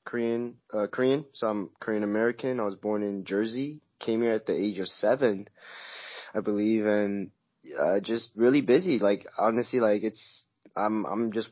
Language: English